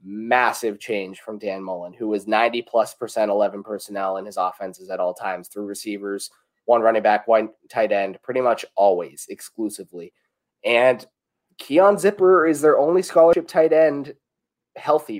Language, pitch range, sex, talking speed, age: English, 110-135 Hz, male, 160 wpm, 20-39